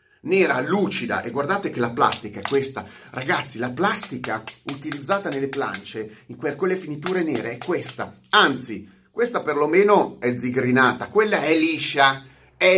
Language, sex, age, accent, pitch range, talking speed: Italian, male, 30-49, native, 120-180 Hz, 140 wpm